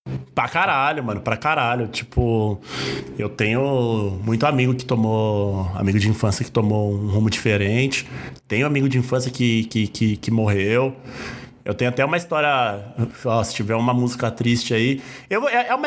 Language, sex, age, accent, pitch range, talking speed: Portuguese, male, 20-39, Brazilian, 115-150 Hz, 150 wpm